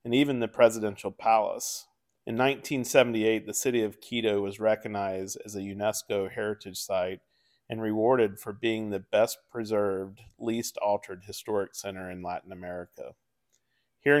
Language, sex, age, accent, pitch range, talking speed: English, male, 40-59, American, 100-115 Hz, 140 wpm